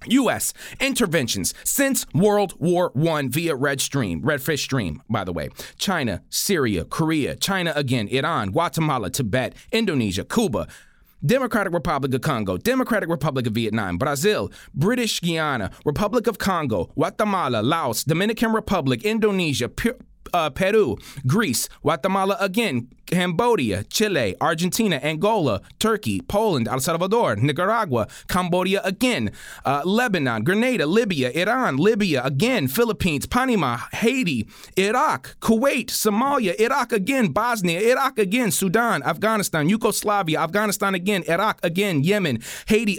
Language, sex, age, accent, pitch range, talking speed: English, male, 30-49, American, 155-220 Hz, 120 wpm